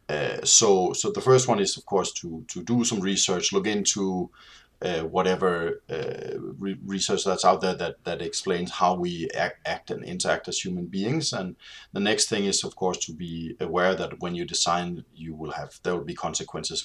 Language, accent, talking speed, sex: Swedish, Danish, 205 wpm, male